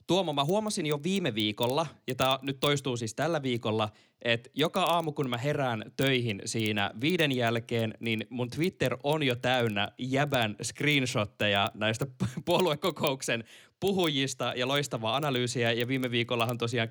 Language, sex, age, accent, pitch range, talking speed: Finnish, male, 20-39, native, 120-155 Hz, 145 wpm